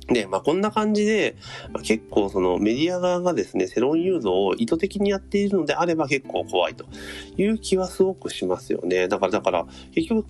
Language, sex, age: Japanese, male, 30-49